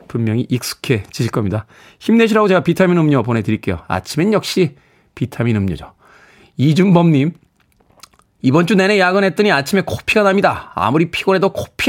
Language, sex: Korean, male